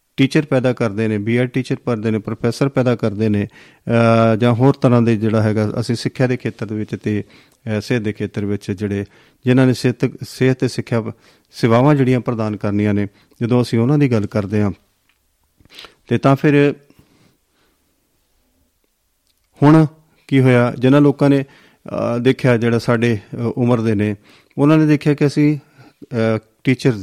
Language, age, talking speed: Punjabi, 40-59, 155 wpm